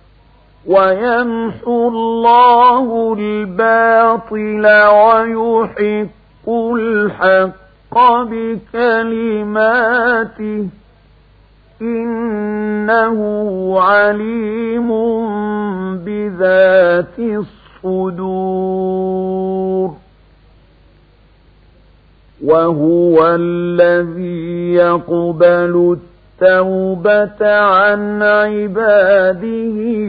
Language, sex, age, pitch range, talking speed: Arabic, male, 50-69, 185-215 Hz, 30 wpm